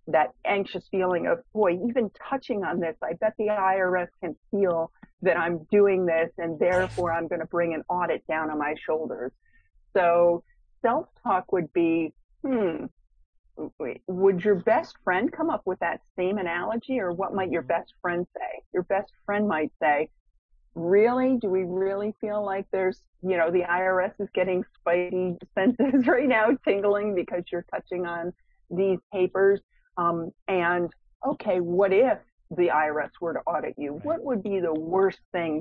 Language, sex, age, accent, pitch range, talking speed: English, female, 40-59, American, 170-215 Hz, 165 wpm